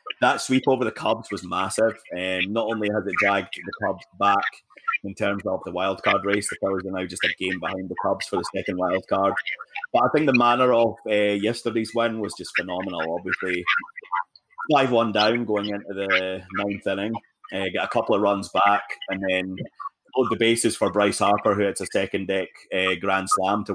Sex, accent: male, British